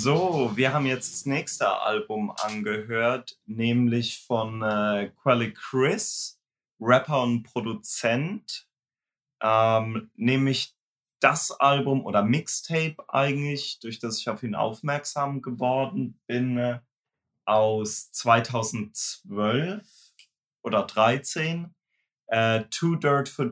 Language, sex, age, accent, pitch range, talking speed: German, male, 30-49, German, 115-145 Hz, 100 wpm